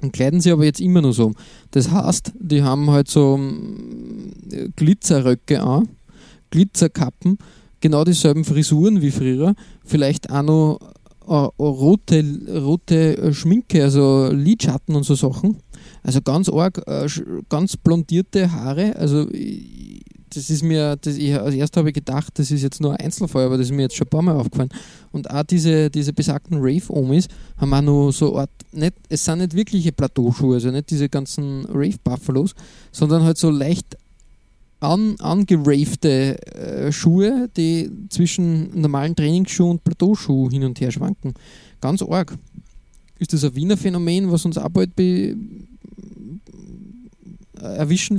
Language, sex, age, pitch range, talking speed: English, male, 20-39, 145-180 Hz, 150 wpm